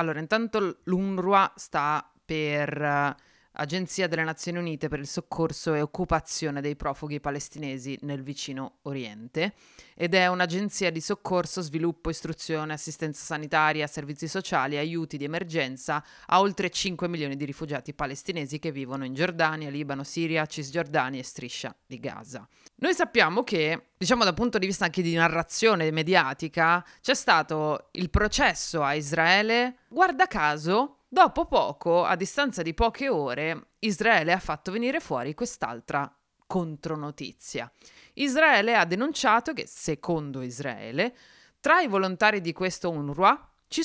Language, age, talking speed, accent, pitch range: Italian, 30-49, 135 wpm, native, 150-200 Hz